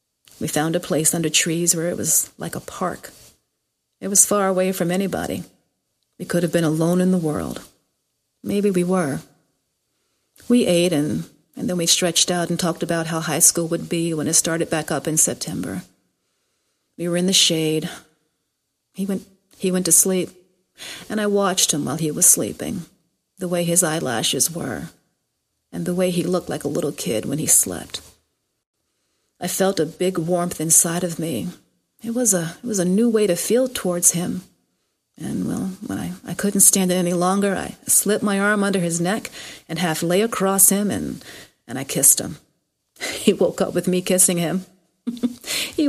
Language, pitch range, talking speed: English, 165-195 Hz, 185 wpm